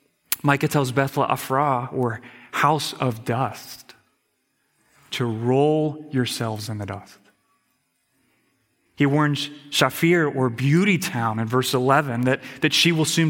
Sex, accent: male, American